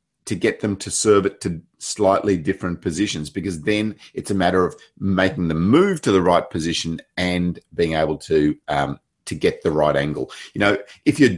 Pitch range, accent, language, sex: 85-110 Hz, Australian, English, male